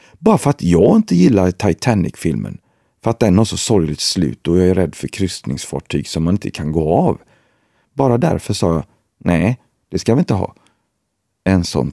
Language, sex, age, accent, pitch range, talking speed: Swedish, male, 40-59, native, 90-115 Hz, 190 wpm